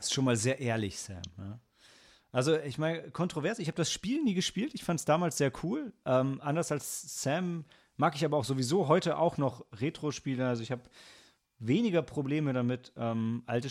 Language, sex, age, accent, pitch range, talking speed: German, male, 30-49, German, 120-155 Hz, 195 wpm